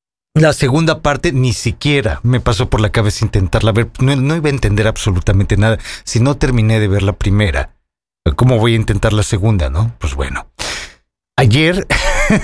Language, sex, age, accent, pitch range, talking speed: English, male, 40-59, Mexican, 105-135 Hz, 180 wpm